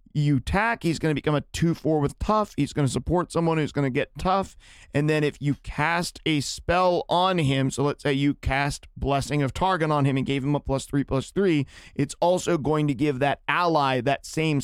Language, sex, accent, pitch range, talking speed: English, male, American, 135-175 Hz, 230 wpm